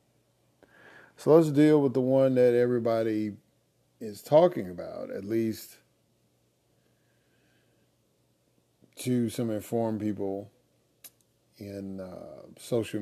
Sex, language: male, English